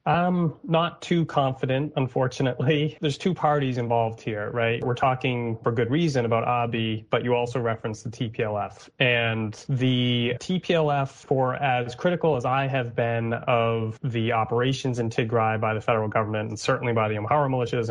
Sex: male